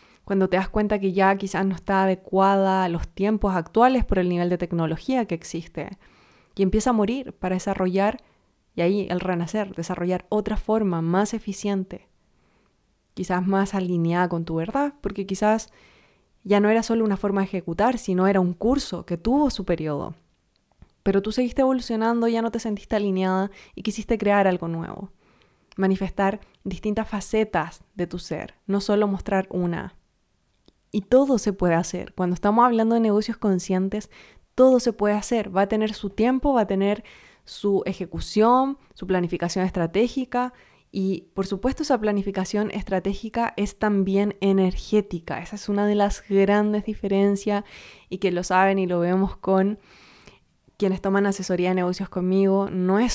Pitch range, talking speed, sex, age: 180-210 Hz, 165 wpm, female, 20-39